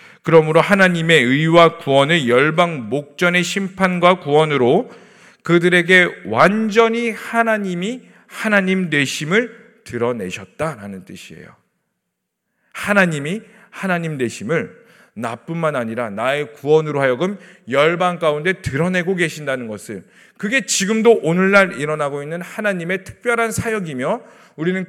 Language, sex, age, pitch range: Korean, male, 40-59, 140-195 Hz